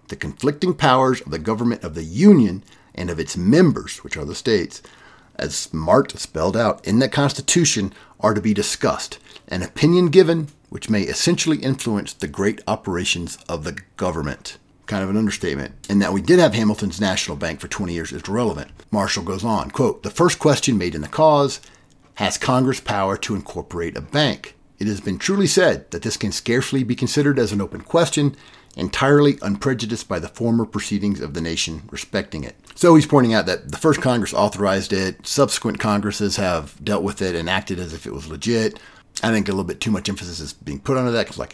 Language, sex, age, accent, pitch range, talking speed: English, male, 50-69, American, 100-140 Hz, 200 wpm